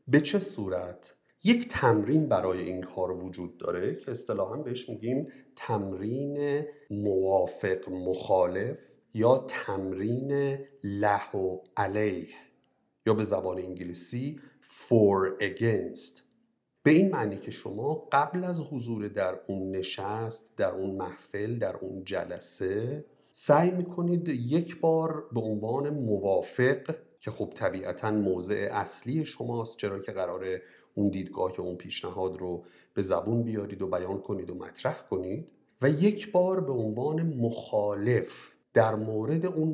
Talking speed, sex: 125 wpm, male